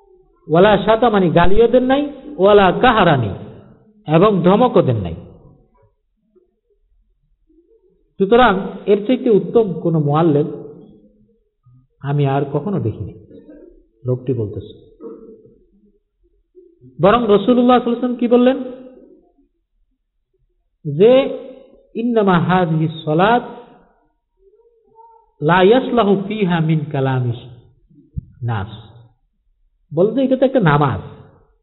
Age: 50-69